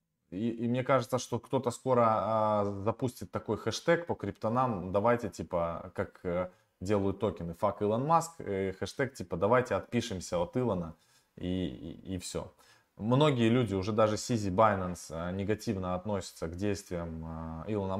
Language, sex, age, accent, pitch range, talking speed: Russian, male, 20-39, native, 95-120 Hz, 135 wpm